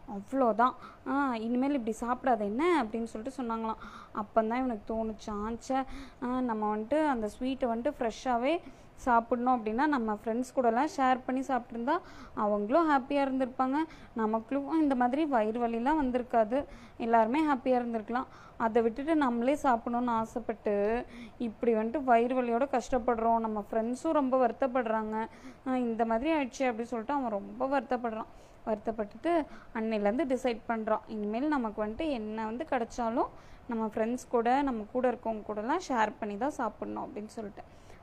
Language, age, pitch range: Tamil, 20-39, 225-265 Hz